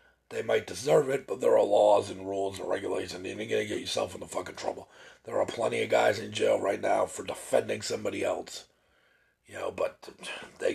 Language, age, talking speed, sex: English, 40-59, 210 wpm, male